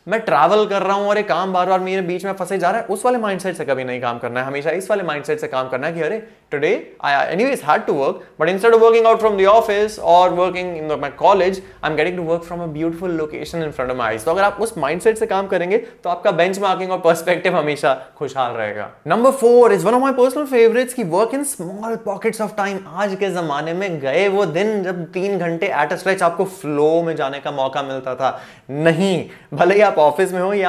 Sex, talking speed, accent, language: male, 150 wpm, native, Hindi